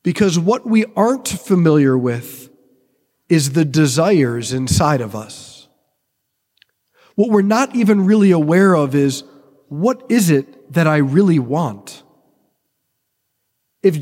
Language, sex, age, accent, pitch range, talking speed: English, male, 40-59, American, 145-220 Hz, 120 wpm